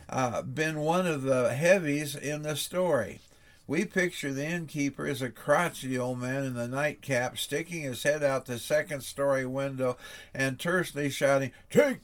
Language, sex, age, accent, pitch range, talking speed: English, male, 60-79, American, 130-160 Hz, 160 wpm